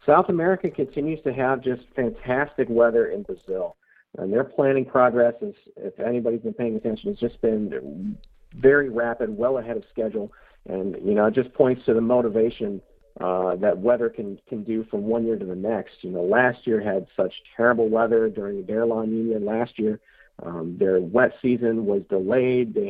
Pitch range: 110-135 Hz